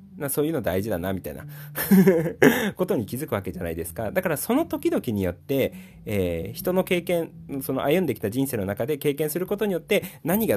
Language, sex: Japanese, male